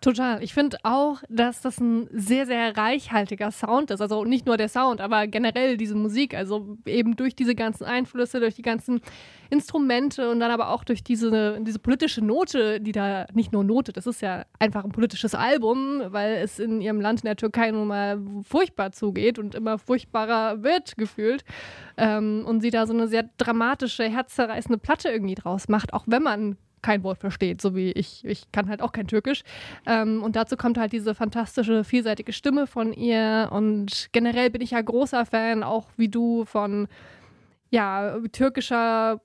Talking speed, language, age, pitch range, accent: 185 wpm, German, 20-39, 215-245 Hz, German